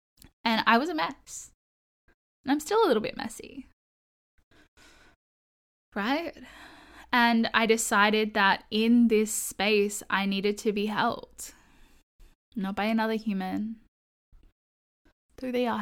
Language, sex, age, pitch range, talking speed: English, female, 10-29, 205-240 Hz, 120 wpm